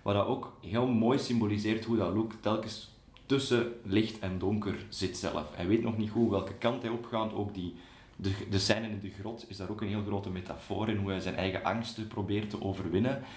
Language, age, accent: Dutch, 30-49, Belgian